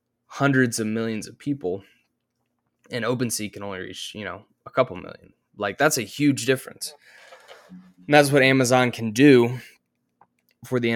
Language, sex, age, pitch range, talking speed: English, male, 20-39, 100-125 Hz, 155 wpm